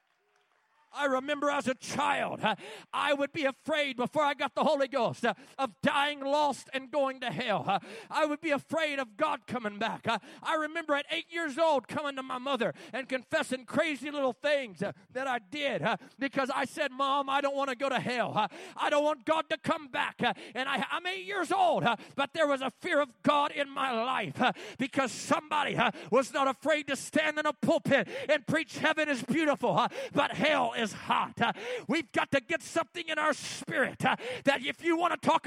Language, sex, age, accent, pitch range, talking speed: English, male, 40-59, American, 265-315 Hz, 220 wpm